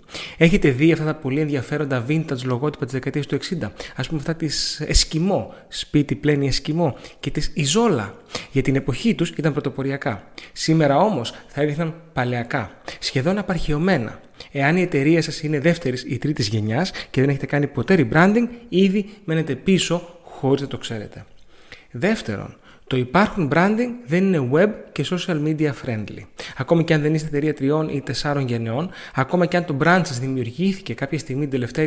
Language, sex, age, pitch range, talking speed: Greek, male, 30-49, 130-170 Hz, 170 wpm